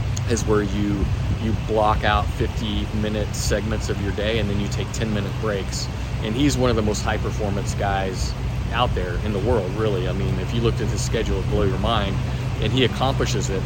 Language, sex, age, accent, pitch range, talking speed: English, male, 30-49, American, 105-115 Hz, 210 wpm